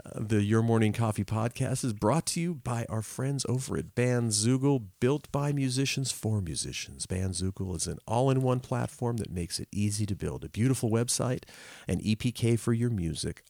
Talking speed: 175 wpm